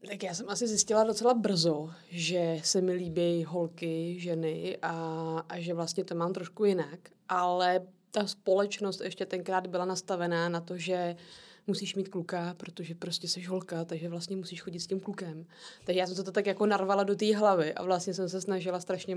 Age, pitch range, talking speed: 20-39, 175-200 Hz, 190 wpm